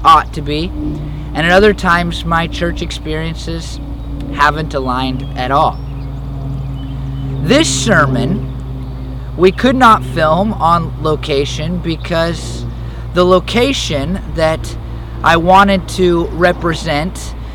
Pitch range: 120-165 Hz